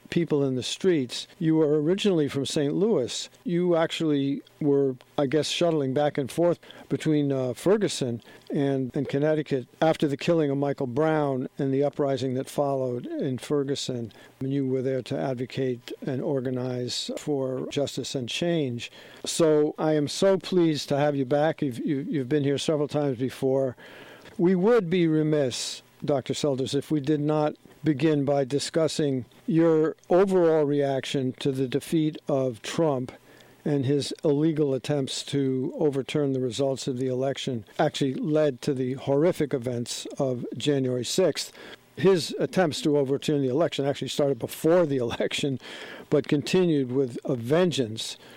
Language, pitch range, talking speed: English, 130-155 Hz, 150 wpm